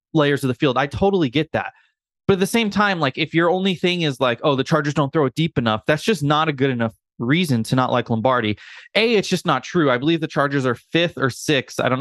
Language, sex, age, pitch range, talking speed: English, male, 20-39, 130-185 Hz, 270 wpm